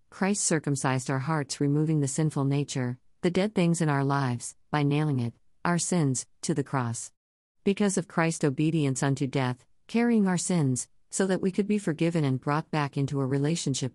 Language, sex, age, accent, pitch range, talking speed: English, female, 50-69, American, 130-165 Hz, 185 wpm